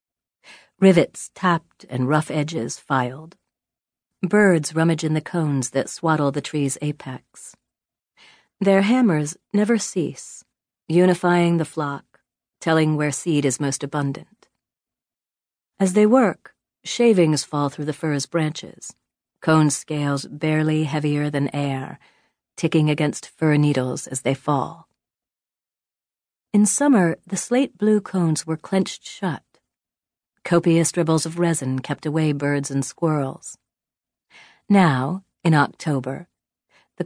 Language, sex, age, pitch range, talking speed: English, female, 40-59, 140-170 Hz, 120 wpm